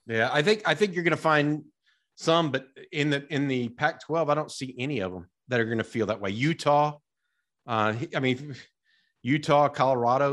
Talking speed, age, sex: 205 wpm, 40-59, male